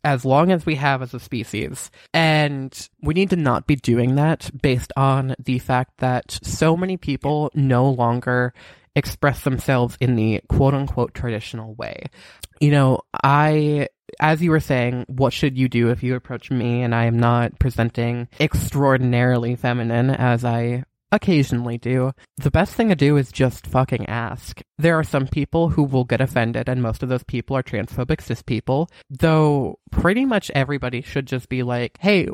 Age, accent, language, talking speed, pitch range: 20-39, American, English, 175 wpm, 125-150 Hz